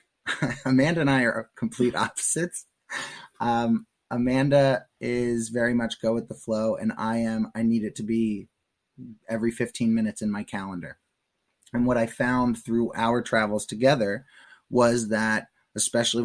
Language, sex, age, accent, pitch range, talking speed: English, male, 20-39, American, 110-115 Hz, 150 wpm